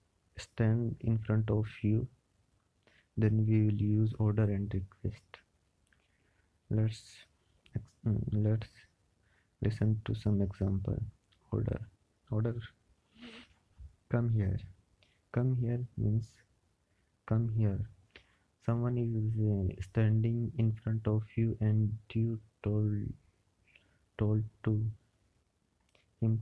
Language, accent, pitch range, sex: Hindi, native, 100-110 Hz, male